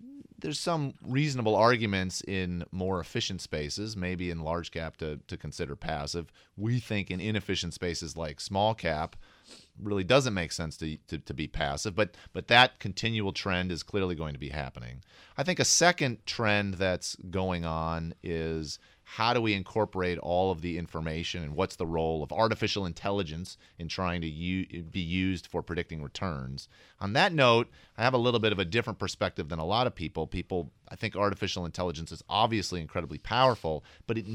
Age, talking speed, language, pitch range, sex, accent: 30-49, 180 wpm, English, 85-105 Hz, male, American